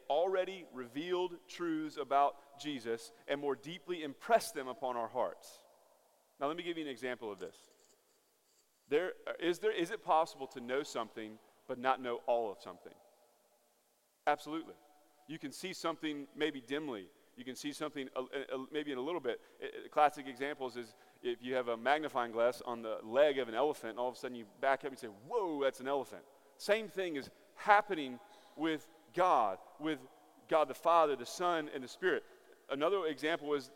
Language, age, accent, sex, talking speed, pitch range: English, 30-49, American, male, 180 wpm, 120-165 Hz